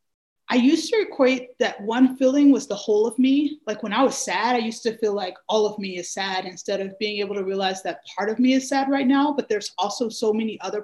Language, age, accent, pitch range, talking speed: English, 30-49, American, 205-260 Hz, 260 wpm